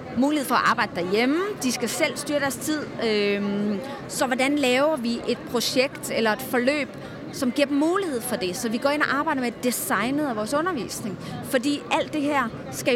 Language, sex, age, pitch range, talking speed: Danish, female, 30-49, 210-265 Hz, 195 wpm